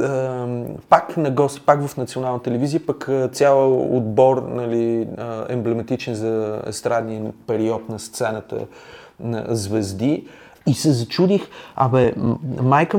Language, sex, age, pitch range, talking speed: Bulgarian, male, 30-49, 115-155 Hz, 110 wpm